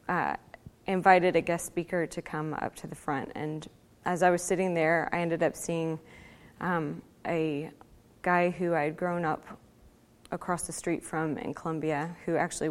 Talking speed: 175 wpm